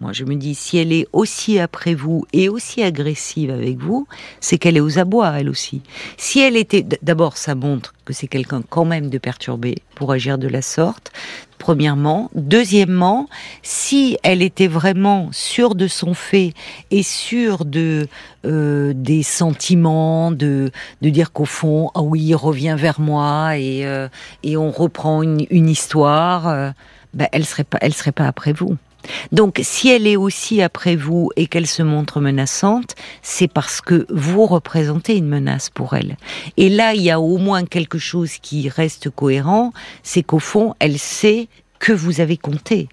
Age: 50-69